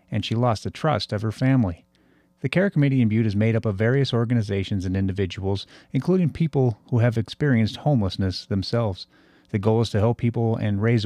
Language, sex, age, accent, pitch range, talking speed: English, male, 30-49, American, 100-125 Hz, 195 wpm